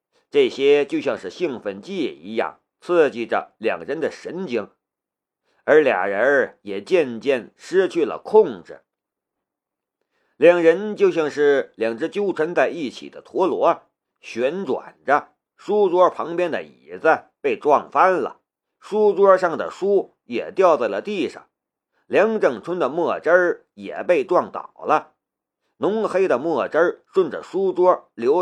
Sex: male